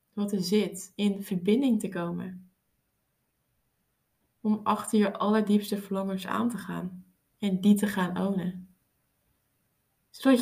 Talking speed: 120 wpm